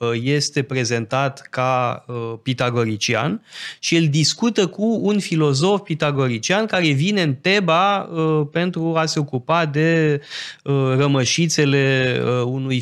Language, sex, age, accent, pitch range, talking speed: Romanian, male, 20-39, native, 125-165 Hz, 105 wpm